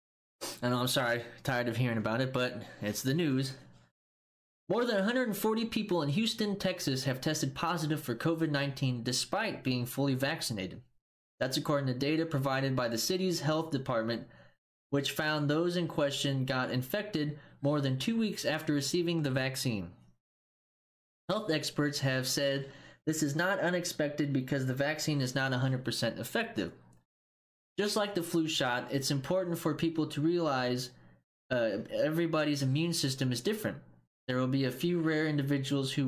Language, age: English, 20-39